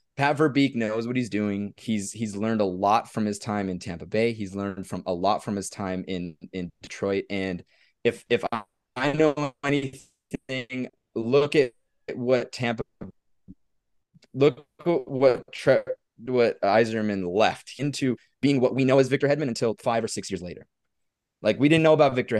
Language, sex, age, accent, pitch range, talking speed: English, male, 20-39, American, 95-125 Hz, 175 wpm